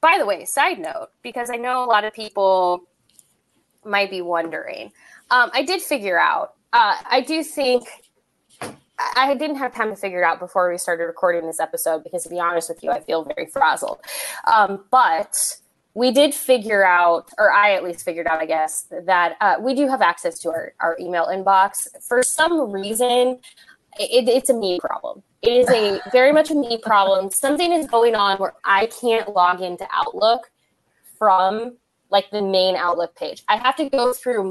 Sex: female